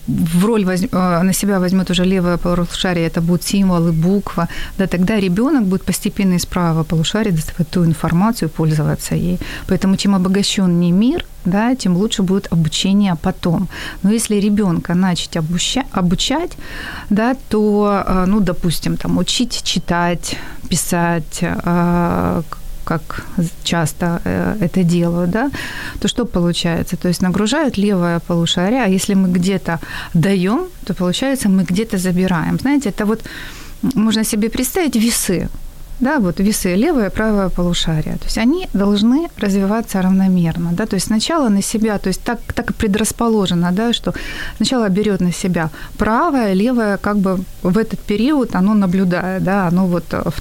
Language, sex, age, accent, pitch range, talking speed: Ukrainian, female, 30-49, native, 175-215 Hz, 150 wpm